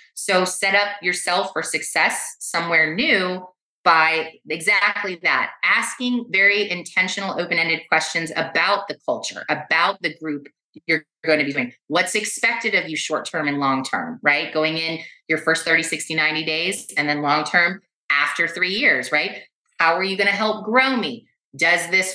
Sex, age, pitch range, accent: female, 30-49, 160-200 Hz, American